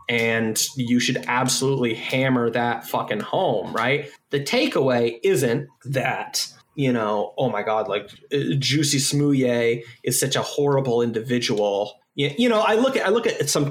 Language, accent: English, American